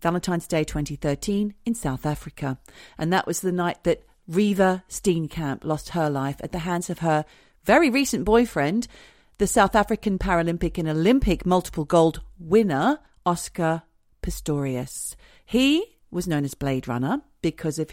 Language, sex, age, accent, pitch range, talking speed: English, female, 40-59, British, 150-190 Hz, 145 wpm